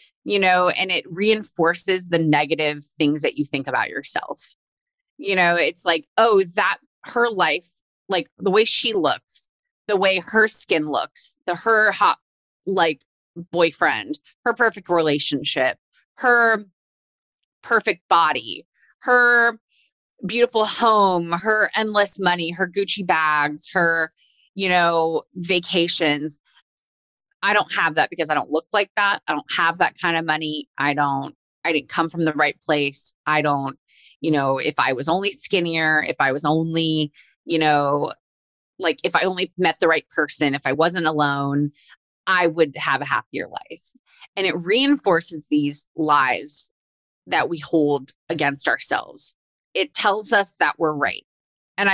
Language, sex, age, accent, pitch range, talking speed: English, female, 20-39, American, 150-200 Hz, 150 wpm